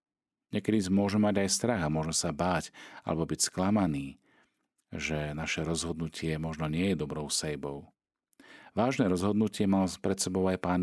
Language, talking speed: Slovak, 145 wpm